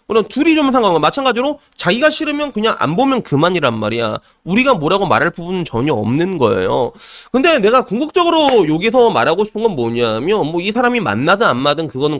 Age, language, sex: 30-49, Korean, male